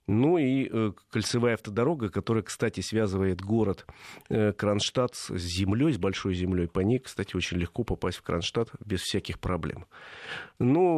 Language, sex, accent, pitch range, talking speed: Russian, male, native, 95-120 Hz, 155 wpm